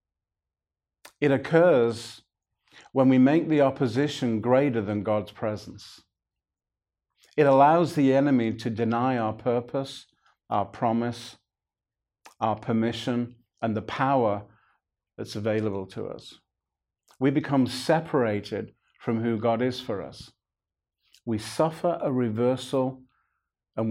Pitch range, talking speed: 110-130 Hz, 110 wpm